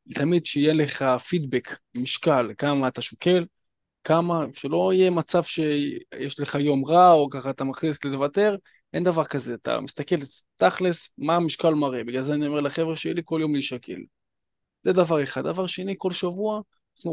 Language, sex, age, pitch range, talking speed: Hebrew, male, 20-39, 135-180 Hz, 170 wpm